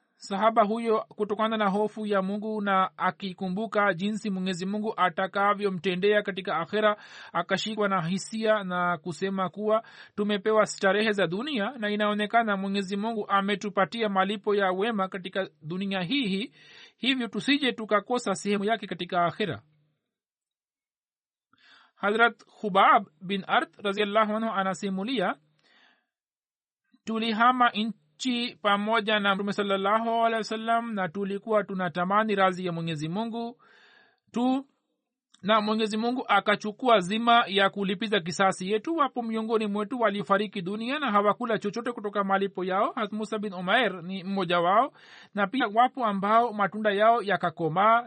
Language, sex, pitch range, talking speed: Swahili, male, 195-225 Hz, 125 wpm